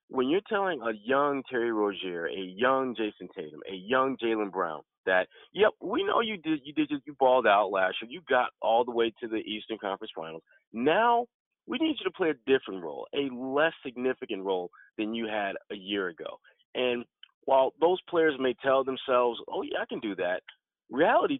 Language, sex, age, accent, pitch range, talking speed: English, male, 30-49, American, 110-150 Hz, 200 wpm